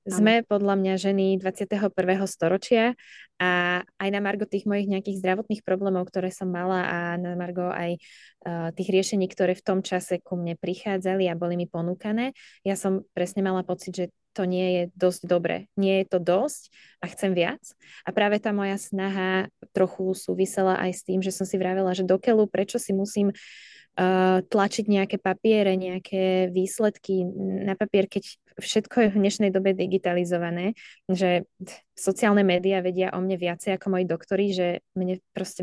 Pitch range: 185-205 Hz